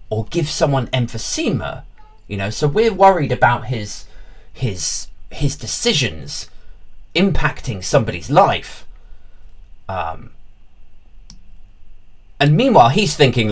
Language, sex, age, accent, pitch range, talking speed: English, male, 30-49, British, 95-150 Hz, 100 wpm